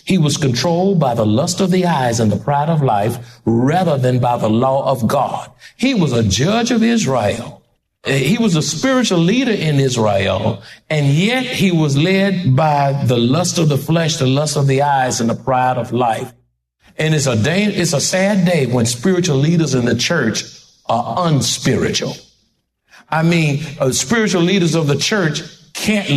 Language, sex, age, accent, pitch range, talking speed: English, male, 60-79, American, 125-175 Hz, 185 wpm